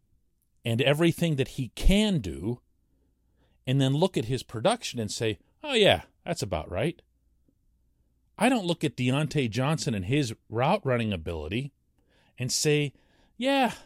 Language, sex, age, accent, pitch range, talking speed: English, male, 40-59, American, 115-185 Hz, 140 wpm